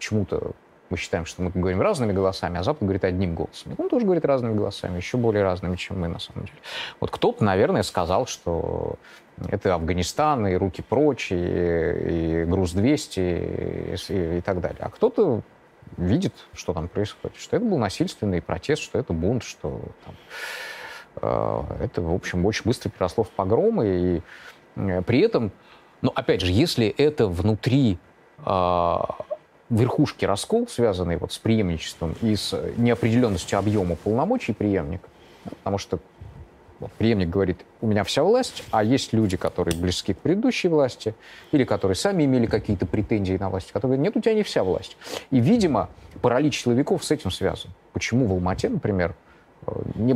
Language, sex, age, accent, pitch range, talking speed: Russian, male, 30-49, native, 90-115 Hz, 165 wpm